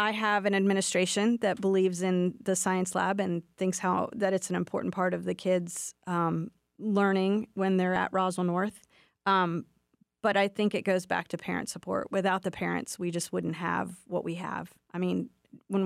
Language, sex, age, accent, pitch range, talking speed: English, female, 30-49, American, 180-205 Hz, 195 wpm